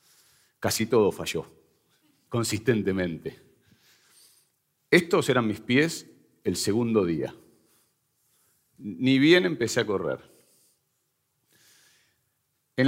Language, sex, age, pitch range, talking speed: Spanish, male, 40-59, 100-140 Hz, 80 wpm